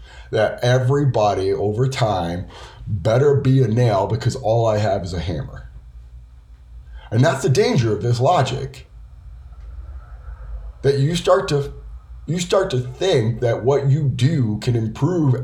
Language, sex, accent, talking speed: English, male, American, 140 wpm